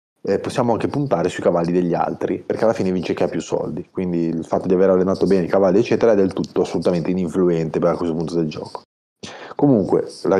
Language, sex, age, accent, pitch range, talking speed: Italian, male, 30-49, native, 80-95 Hz, 220 wpm